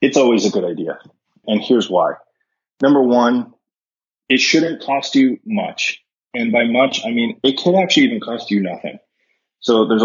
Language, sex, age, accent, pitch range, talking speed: English, male, 20-39, American, 105-140 Hz, 175 wpm